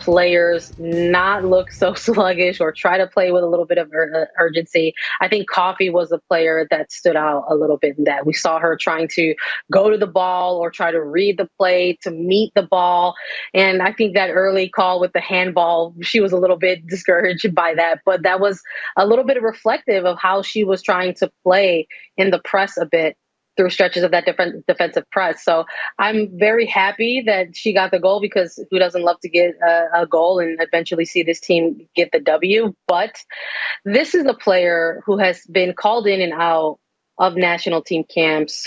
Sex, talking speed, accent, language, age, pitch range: female, 205 wpm, American, English, 20-39, 170-195 Hz